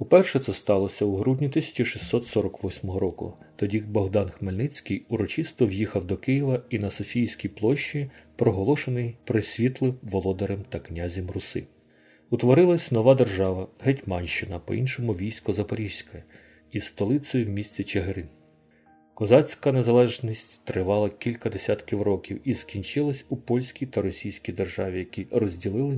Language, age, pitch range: Ukrainian, 40-59, 100-125 Hz